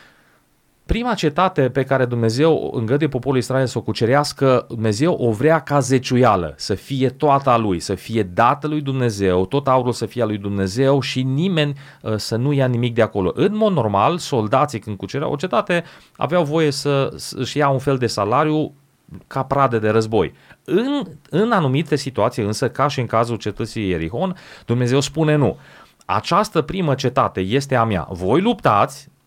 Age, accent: 30-49, native